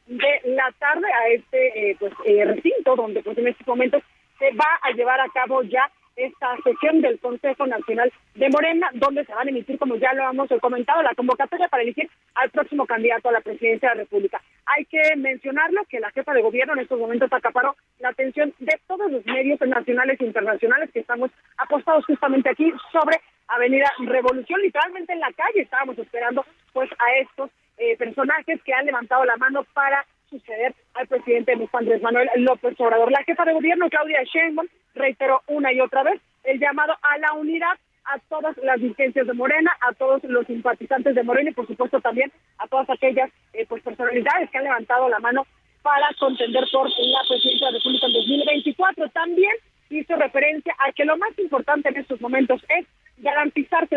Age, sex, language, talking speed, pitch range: 30-49, female, Spanish, 190 wpm, 250-310 Hz